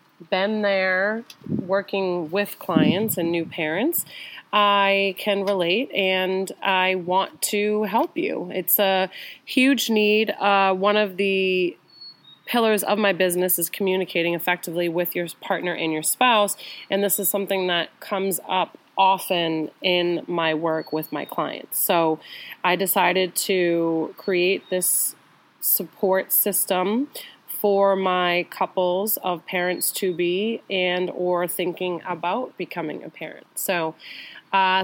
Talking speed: 130 wpm